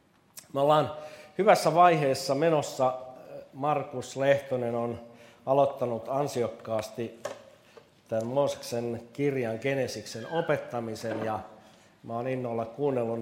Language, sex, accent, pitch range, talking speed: Finnish, male, native, 110-140 Hz, 80 wpm